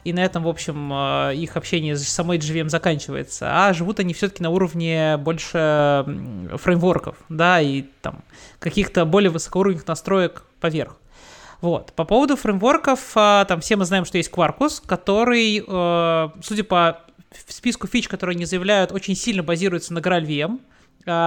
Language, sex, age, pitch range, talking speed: Russian, male, 20-39, 165-210 Hz, 145 wpm